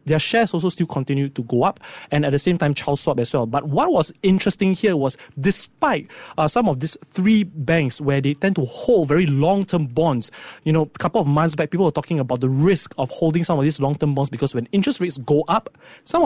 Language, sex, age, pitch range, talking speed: English, male, 20-39, 140-185 Hz, 235 wpm